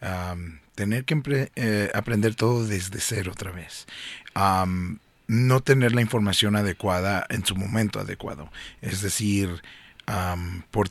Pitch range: 95-110 Hz